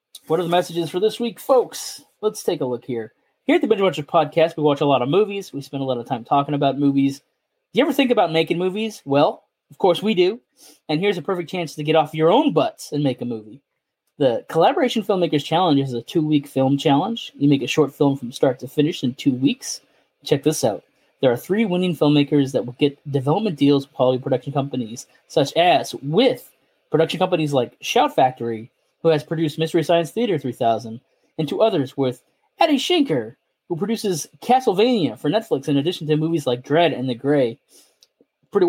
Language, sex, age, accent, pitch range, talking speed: English, male, 20-39, American, 140-185 Hz, 210 wpm